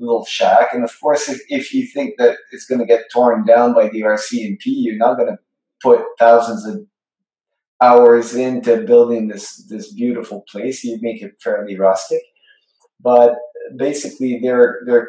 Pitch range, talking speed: 115-150 Hz, 165 wpm